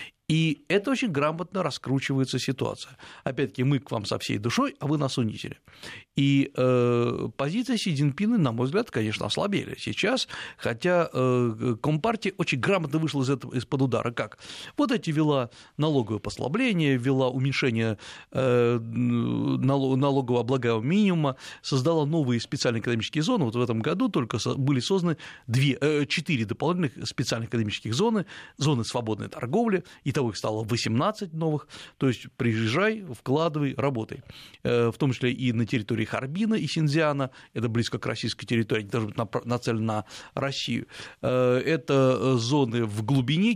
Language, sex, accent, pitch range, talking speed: Russian, male, native, 120-155 Hz, 145 wpm